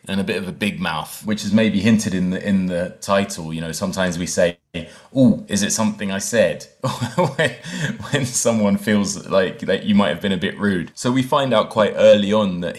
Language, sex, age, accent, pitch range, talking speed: English, male, 20-39, British, 95-120 Hz, 220 wpm